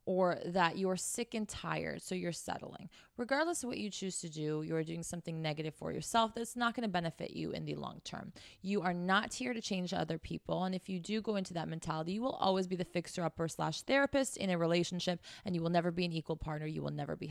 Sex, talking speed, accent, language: female, 250 wpm, American, English